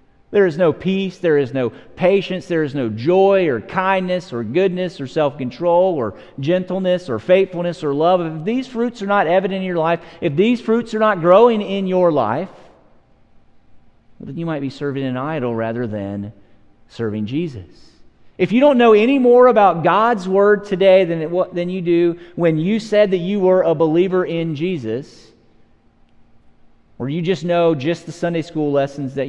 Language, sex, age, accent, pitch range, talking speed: English, male, 40-59, American, 115-175 Hz, 180 wpm